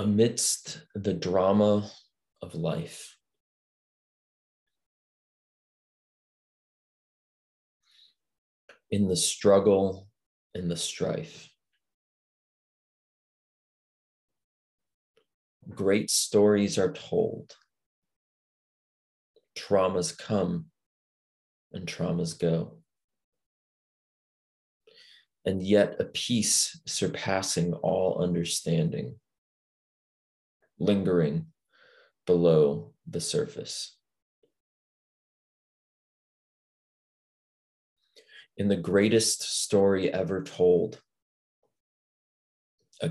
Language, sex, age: English, male, 30-49